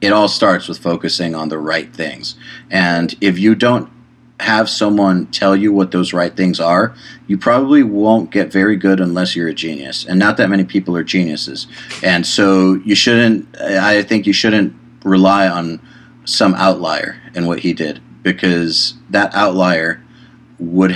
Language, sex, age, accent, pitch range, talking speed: English, male, 40-59, American, 85-105 Hz, 170 wpm